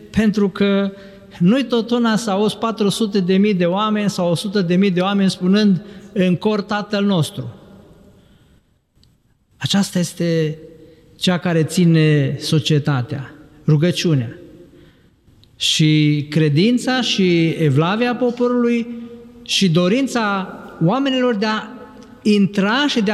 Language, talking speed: Romanian, 110 wpm